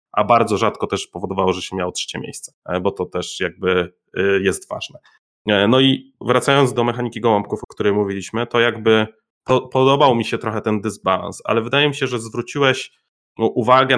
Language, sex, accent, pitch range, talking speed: Polish, male, native, 105-130 Hz, 170 wpm